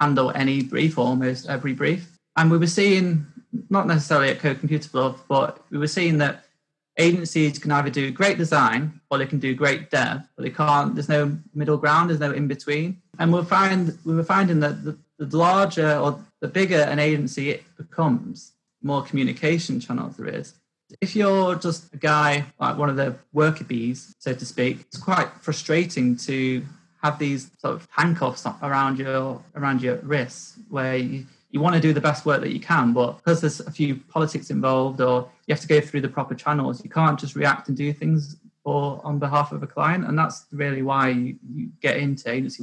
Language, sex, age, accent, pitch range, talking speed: English, male, 30-49, British, 135-160 Hz, 200 wpm